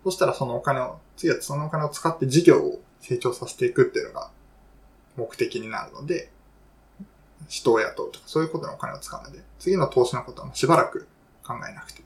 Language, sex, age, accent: Japanese, male, 20-39, native